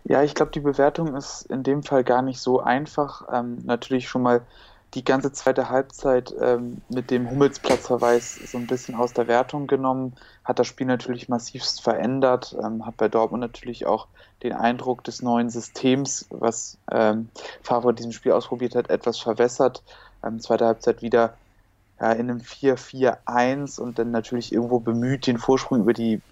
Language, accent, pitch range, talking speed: German, German, 115-125 Hz, 170 wpm